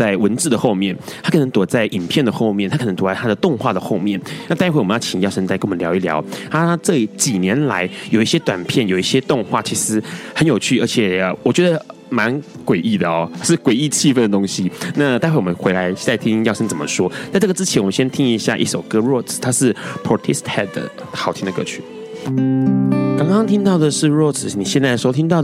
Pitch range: 100-135 Hz